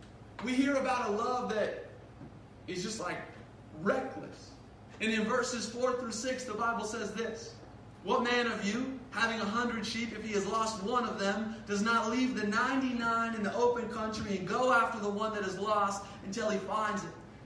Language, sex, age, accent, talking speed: English, male, 30-49, American, 195 wpm